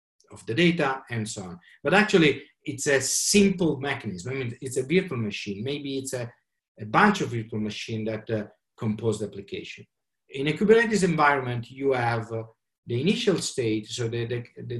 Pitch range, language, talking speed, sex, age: 115-160 Hz, English, 185 wpm, male, 50-69